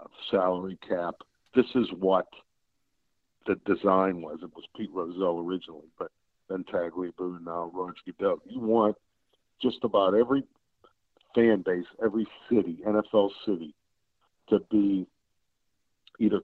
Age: 50-69